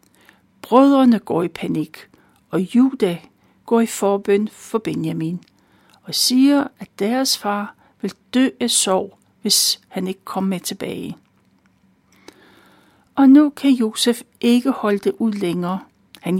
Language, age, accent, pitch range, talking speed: Danish, 60-79, native, 195-255 Hz, 130 wpm